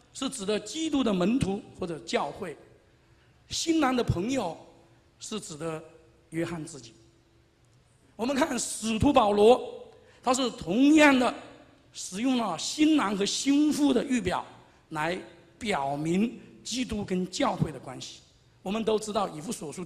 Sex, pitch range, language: male, 165-265 Hz, Chinese